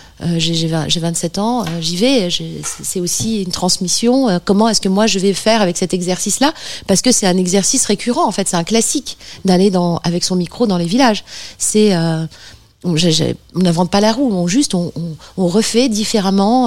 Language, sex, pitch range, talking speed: French, female, 170-205 Hz, 220 wpm